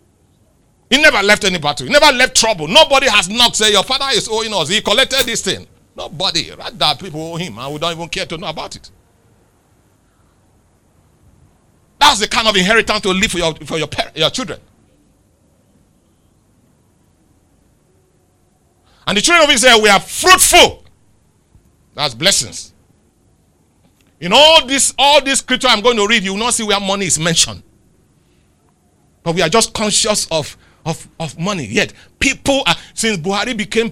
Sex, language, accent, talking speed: male, English, Nigerian, 165 wpm